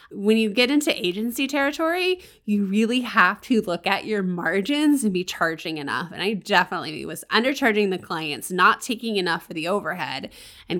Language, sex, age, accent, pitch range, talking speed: English, female, 20-39, American, 180-225 Hz, 180 wpm